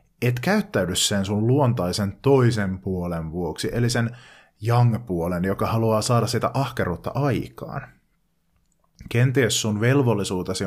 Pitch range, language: 95-130 Hz, Finnish